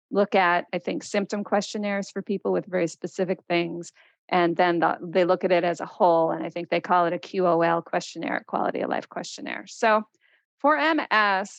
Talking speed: 190 wpm